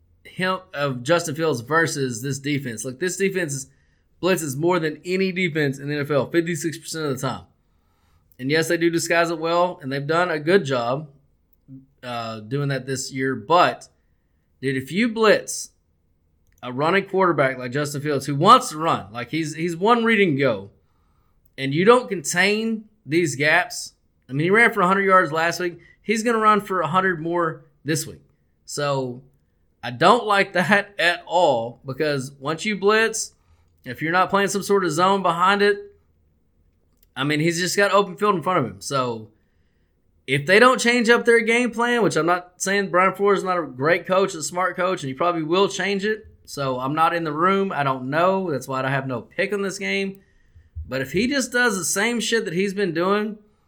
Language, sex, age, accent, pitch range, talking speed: English, male, 20-39, American, 130-195 Hz, 200 wpm